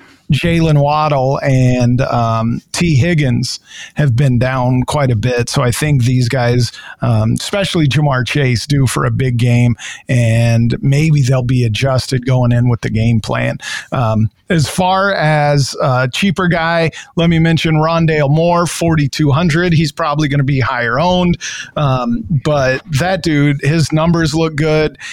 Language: English